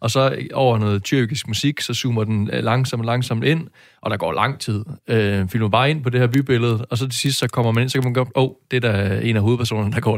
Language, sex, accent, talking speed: Danish, male, native, 285 wpm